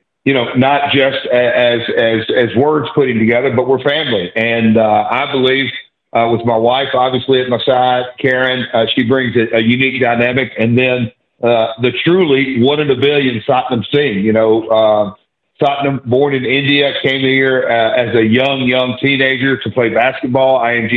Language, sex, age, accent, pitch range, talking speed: English, male, 50-69, American, 115-135 Hz, 170 wpm